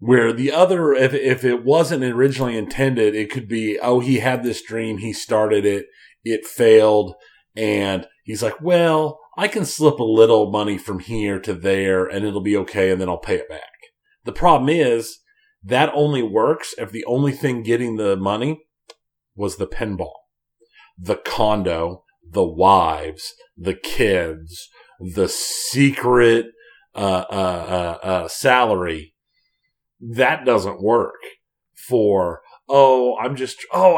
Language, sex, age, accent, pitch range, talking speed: English, male, 40-59, American, 105-155 Hz, 145 wpm